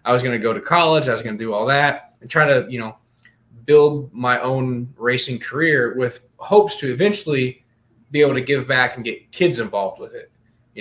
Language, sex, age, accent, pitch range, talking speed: English, male, 20-39, American, 120-145 Hz, 220 wpm